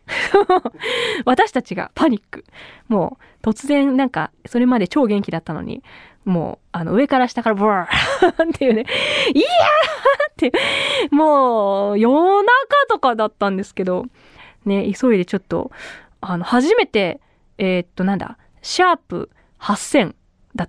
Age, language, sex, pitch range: 20-39, Japanese, female, 200-275 Hz